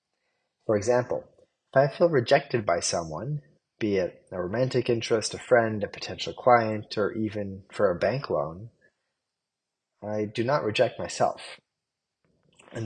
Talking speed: 140 wpm